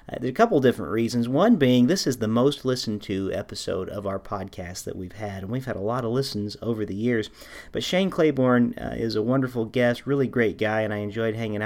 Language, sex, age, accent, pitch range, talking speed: English, male, 40-59, American, 105-120 Hz, 240 wpm